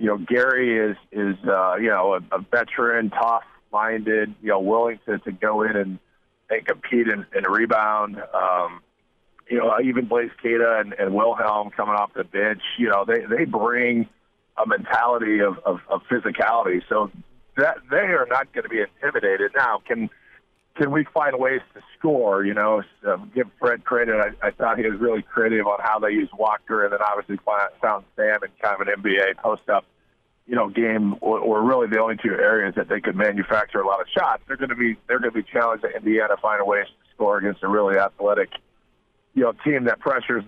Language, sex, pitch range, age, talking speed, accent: English, male, 105-130 Hz, 40-59, 205 wpm, American